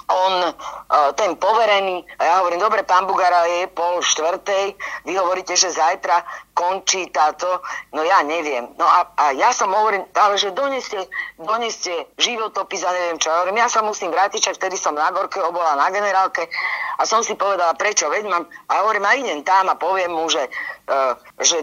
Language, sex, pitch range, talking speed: Slovak, female, 165-210 Hz, 180 wpm